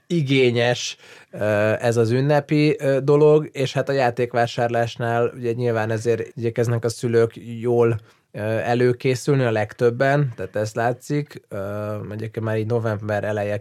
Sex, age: male, 20-39